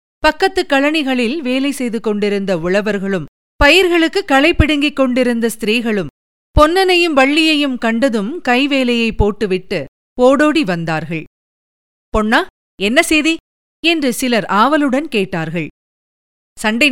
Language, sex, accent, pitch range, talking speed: Tamil, female, native, 210-290 Hz, 90 wpm